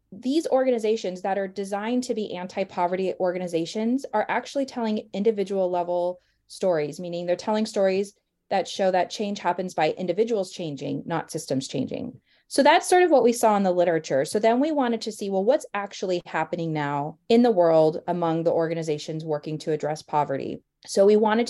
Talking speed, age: 180 wpm, 20-39